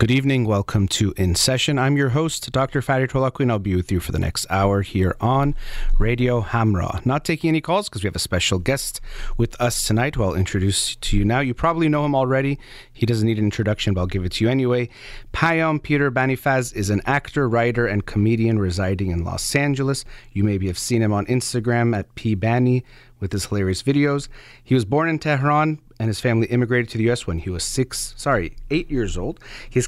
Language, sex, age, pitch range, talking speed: English, male, 30-49, 110-135 Hz, 220 wpm